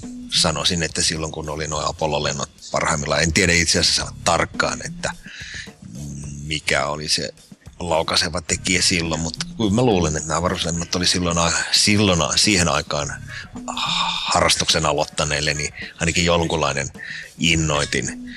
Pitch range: 80-95 Hz